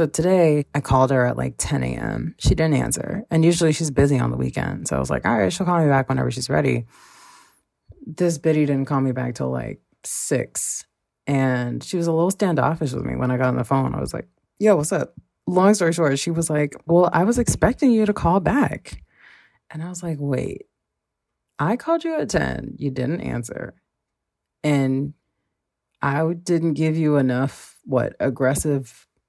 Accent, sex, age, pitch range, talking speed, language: American, female, 30-49, 125-165 Hz, 195 wpm, English